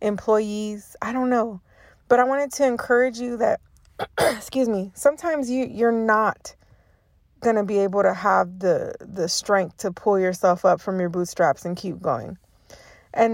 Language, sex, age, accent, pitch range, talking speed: English, female, 20-39, American, 190-235 Hz, 170 wpm